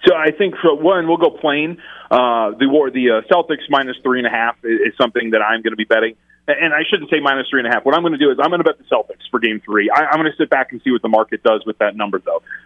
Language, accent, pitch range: English, American, 110-145 Hz